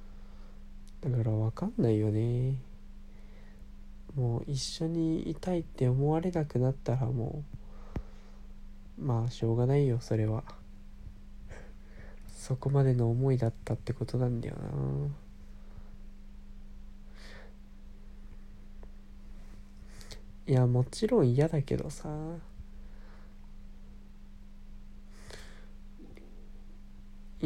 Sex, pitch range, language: male, 100-130 Hz, Japanese